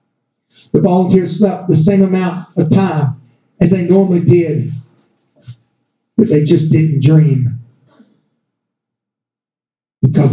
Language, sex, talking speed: English, male, 105 wpm